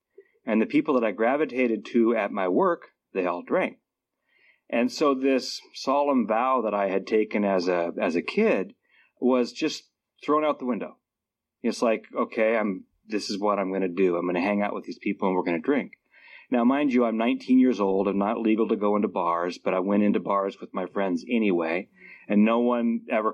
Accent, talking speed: American, 210 wpm